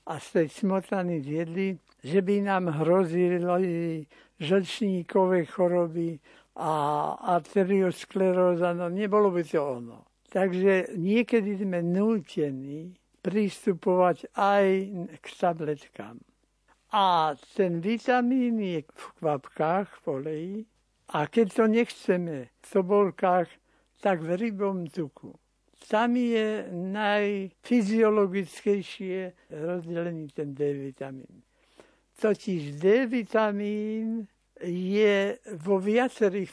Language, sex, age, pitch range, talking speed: Slovak, male, 60-79, 170-210 Hz, 90 wpm